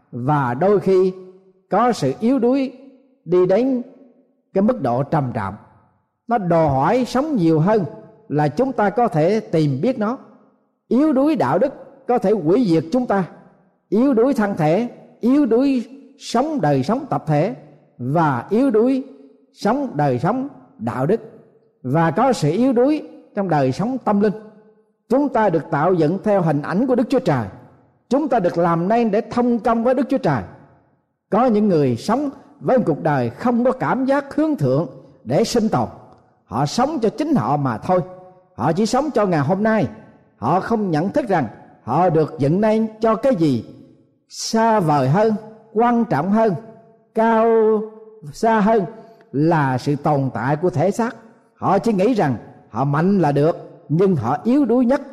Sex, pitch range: male, 160-245 Hz